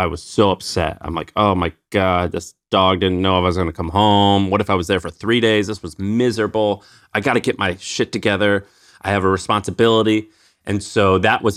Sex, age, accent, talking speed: male, 30-49, American, 225 wpm